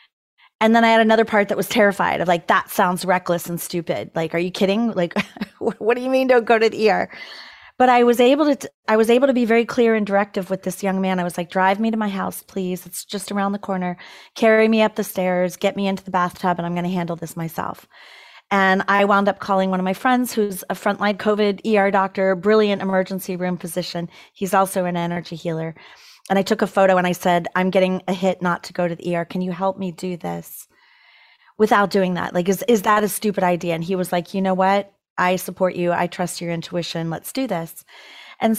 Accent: American